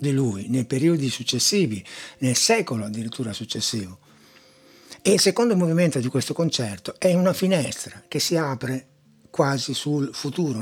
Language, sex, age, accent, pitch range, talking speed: Italian, male, 60-79, native, 120-155 Hz, 140 wpm